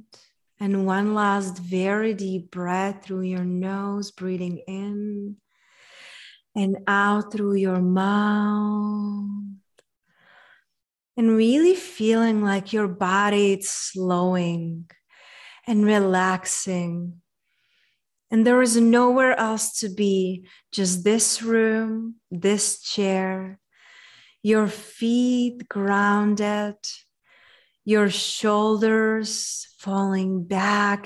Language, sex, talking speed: English, female, 85 wpm